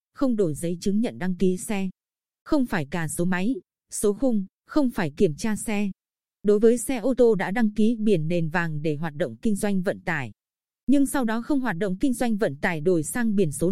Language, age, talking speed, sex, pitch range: Vietnamese, 20-39, 230 wpm, female, 180-235 Hz